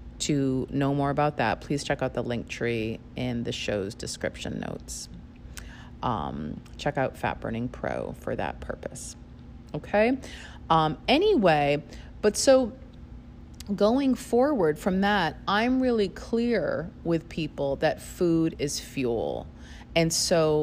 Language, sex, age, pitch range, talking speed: English, female, 30-49, 130-180 Hz, 130 wpm